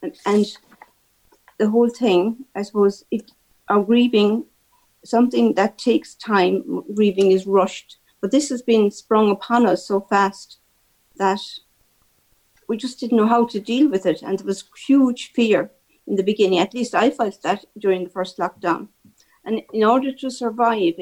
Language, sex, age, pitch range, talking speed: English, female, 50-69, 190-230 Hz, 160 wpm